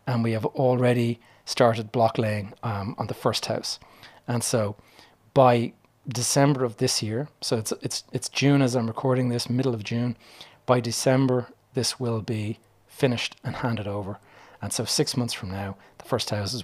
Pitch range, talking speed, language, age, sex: 105-125 Hz, 175 wpm, English, 30-49, male